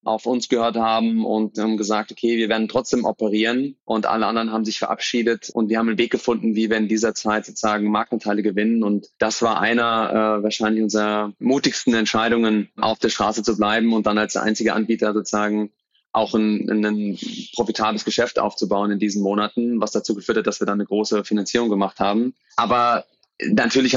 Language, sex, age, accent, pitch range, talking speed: German, male, 20-39, German, 105-115 Hz, 190 wpm